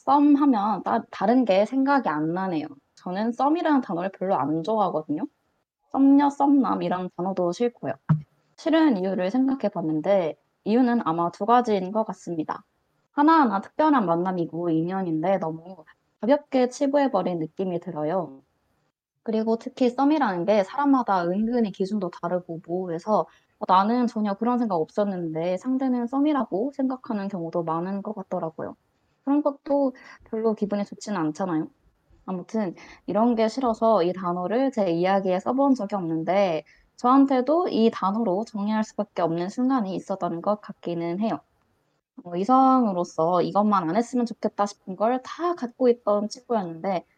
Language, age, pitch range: Korean, 20-39, 175-245 Hz